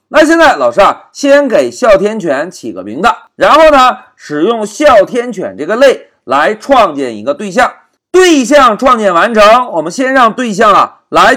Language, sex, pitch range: Chinese, male, 210-300 Hz